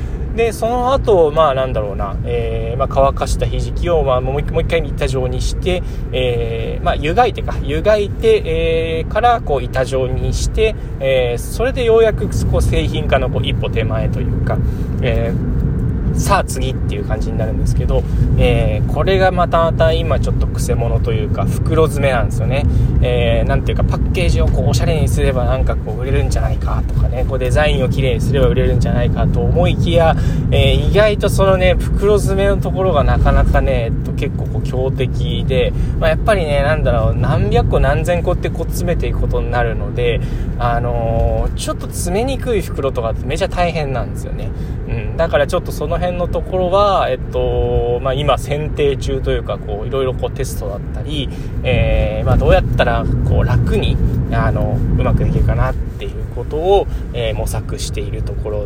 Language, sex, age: Japanese, male, 20-39